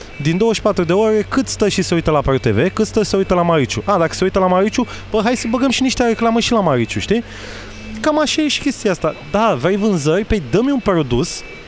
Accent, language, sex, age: native, Romanian, male, 20-39